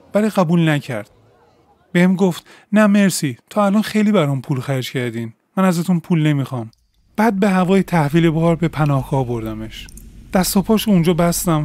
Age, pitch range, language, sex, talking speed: 30-49, 135-185 Hz, Persian, male, 160 wpm